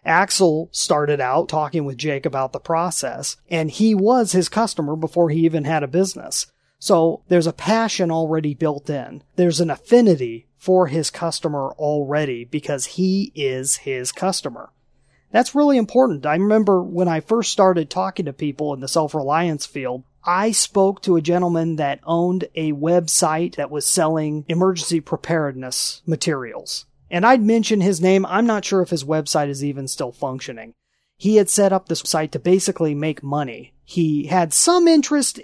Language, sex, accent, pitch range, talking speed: English, male, American, 155-200 Hz, 170 wpm